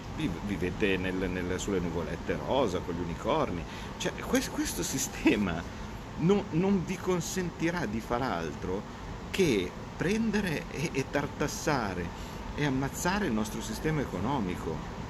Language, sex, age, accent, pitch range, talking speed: Italian, male, 50-69, native, 100-130 Hz, 115 wpm